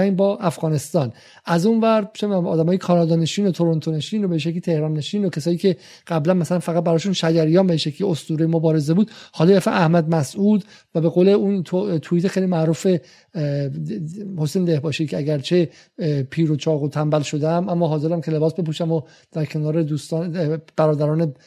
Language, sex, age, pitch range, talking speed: Persian, male, 50-69, 160-195 Hz, 175 wpm